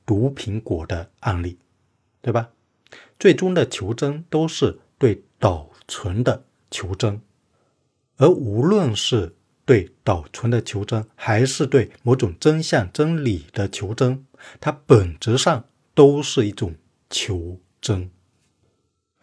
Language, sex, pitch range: Chinese, male, 95-140 Hz